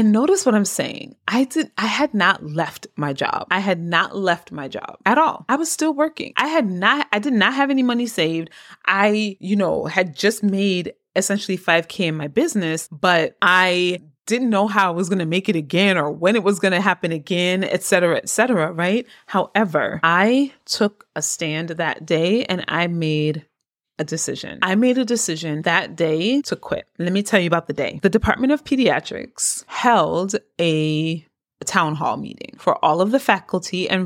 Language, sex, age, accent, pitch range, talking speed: English, female, 30-49, American, 160-215 Hz, 200 wpm